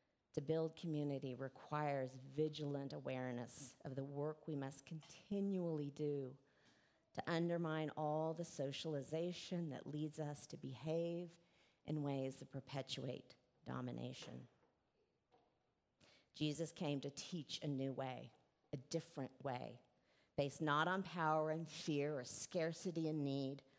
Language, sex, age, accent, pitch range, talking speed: English, female, 40-59, American, 140-175 Hz, 120 wpm